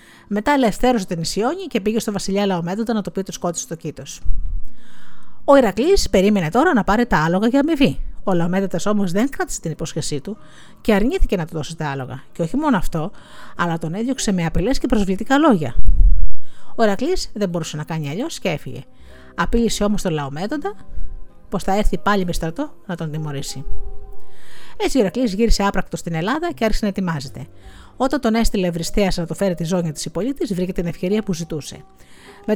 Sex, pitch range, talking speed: female, 170-235 Hz, 190 wpm